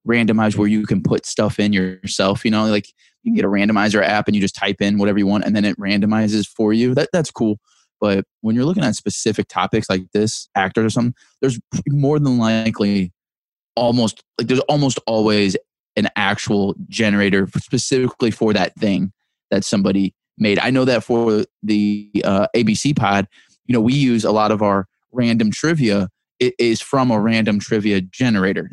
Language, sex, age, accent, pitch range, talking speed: English, male, 20-39, American, 105-125 Hz, 185 wpm